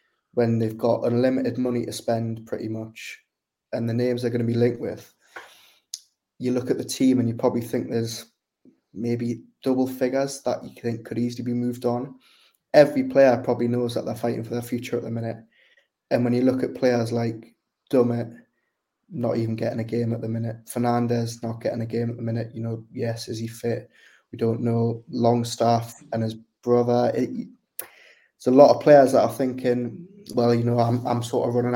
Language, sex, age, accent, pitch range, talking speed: English, male, 20-39, British, 115-125 Hz, 200 wpm